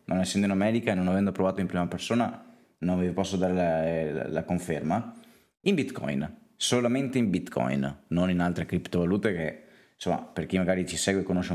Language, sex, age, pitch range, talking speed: Italian, male, 20-39, 80-95 Hz, 190 wpm